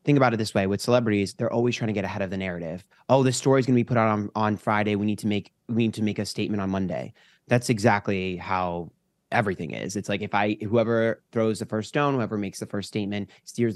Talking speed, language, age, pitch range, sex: 260 wpm, English, 20-39, 100-120 Hz, male